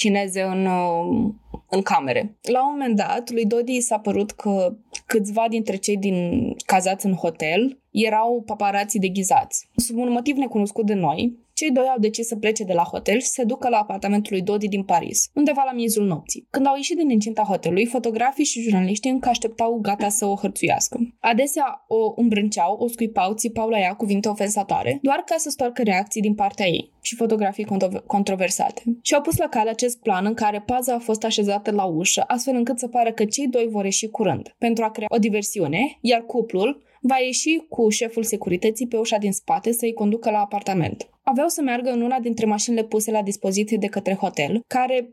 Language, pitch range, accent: Romanian, 205-245 Hz, native